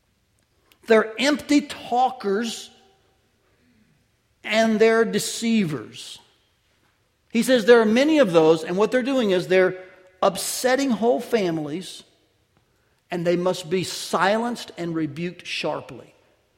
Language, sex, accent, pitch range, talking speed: English, male, American, 160-240 Hz, 110 wpm